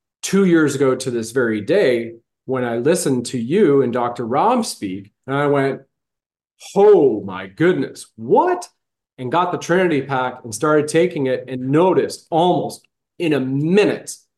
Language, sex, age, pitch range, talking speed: English, male, 30-49, 125-155 Hz, 160 wpm